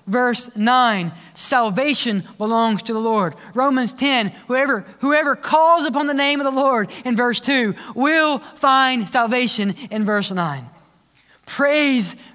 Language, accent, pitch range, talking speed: English, American, 175-230 Hz, 135 wpm